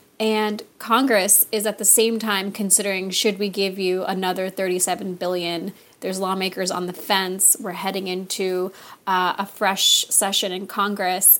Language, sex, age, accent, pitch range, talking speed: English, female, 30-49, American, 190-230 Hz, 155 wpm